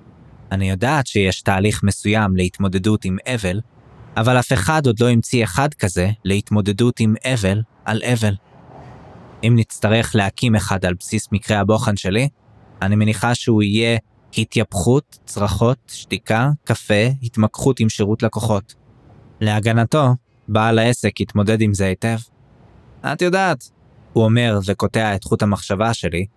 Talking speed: 130 wpm